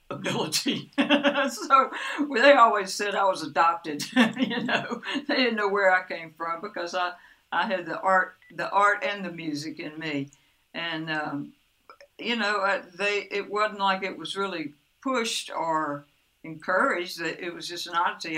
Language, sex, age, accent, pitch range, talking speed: English, female, 60-79, American, 160-205 Hz, 165 wpm